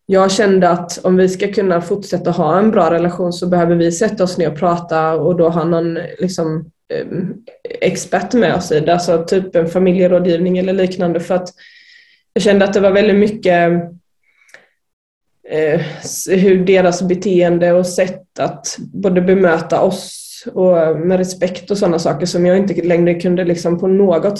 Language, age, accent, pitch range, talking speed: Swedish, 20-39, native, 175-195 Hz, 165 wpm